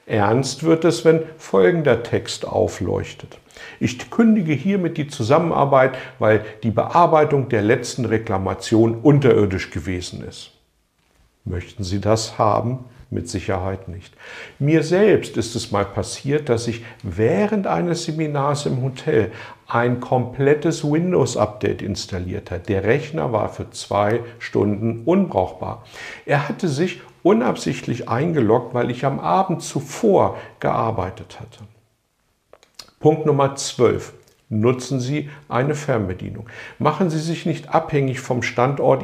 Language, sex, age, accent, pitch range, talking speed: German, male, 60-79, German, 110-145 Hz, 120 wpm